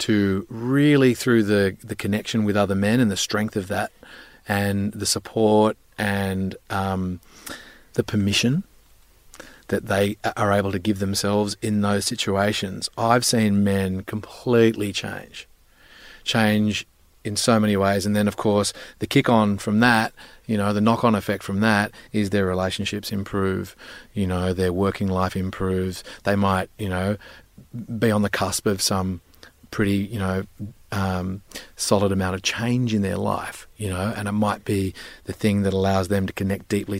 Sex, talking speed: male, 165 wpm